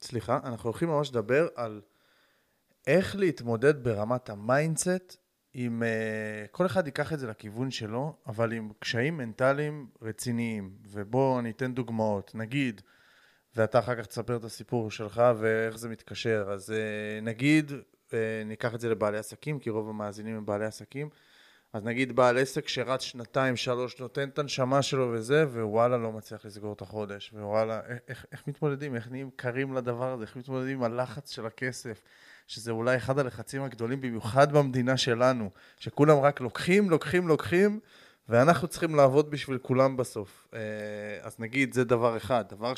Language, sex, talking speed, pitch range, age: Hebrew, male, 155 wpm, 110-140 Hz, 20-39